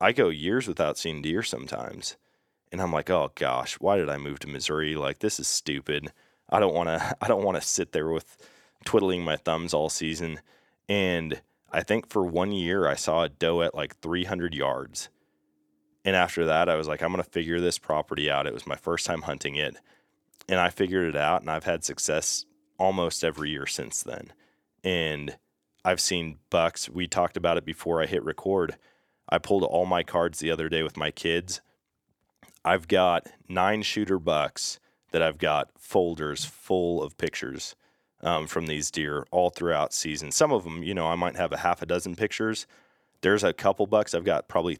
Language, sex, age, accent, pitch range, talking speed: English, male, 20-39, American, 75-90 Hz, 200 wpm